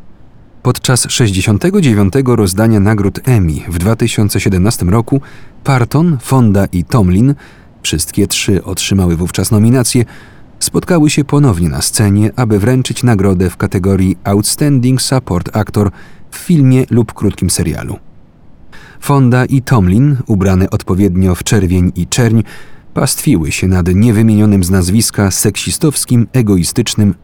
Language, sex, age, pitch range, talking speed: Polish, male, 40-59, 95-130 Hz, 115 wpm